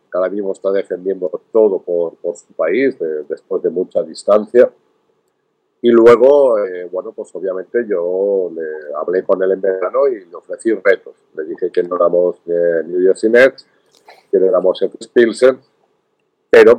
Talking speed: 170 wpm